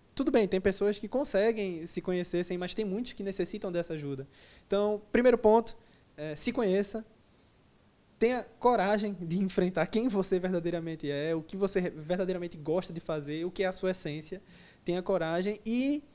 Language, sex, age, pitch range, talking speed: Portuguese, male, 20-39, 160-205 Hz, 165 wpm